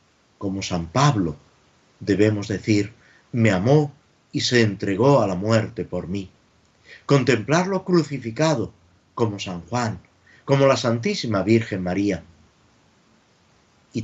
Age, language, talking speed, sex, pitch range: 50-69, Spanish, 110 wpm, male, 95-130 Hz